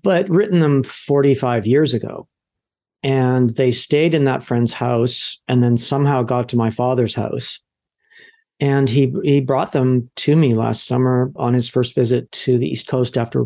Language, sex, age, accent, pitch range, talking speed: English, male, 50-69, American, 125-145 Hz, 175 wpm